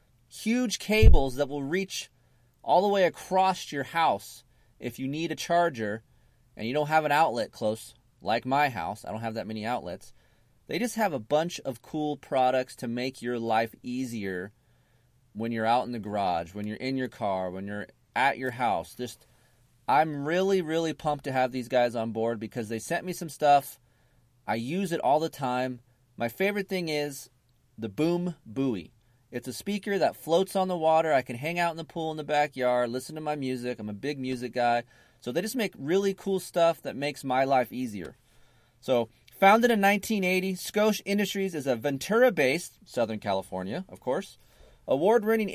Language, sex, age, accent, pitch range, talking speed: English, male, 30-49, American, 120-175 Hz, 190 wpm